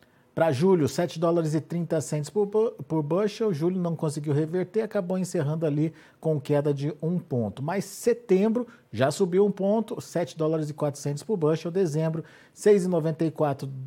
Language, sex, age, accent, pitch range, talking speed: Portuguese, male, 50-69, Brazilian, 135-175 Hz, 145 wpm